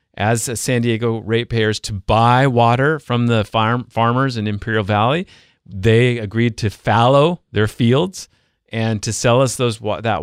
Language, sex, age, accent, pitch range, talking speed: English, male, 40-59, American, 105-135 Hz, 155 wpm